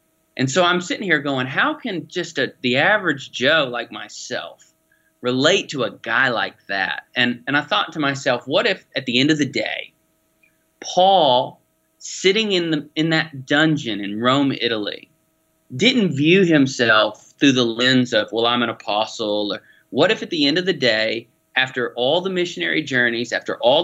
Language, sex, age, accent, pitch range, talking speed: English, male, 30-49, American, 120-160 Hz, 180 wpm